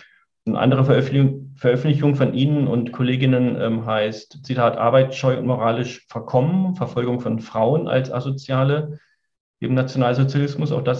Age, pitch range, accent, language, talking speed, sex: 40-59, 120-140 Hz, German, German, 130 wpm, male